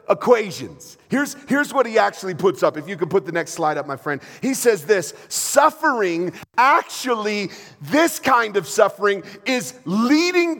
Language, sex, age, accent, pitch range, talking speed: English, male, 40-59, American, 165-240 Hz, 165 wpm